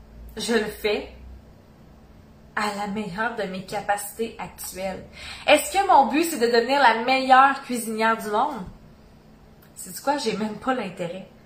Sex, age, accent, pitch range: female, 20-39, Canadian, 205-265 Hz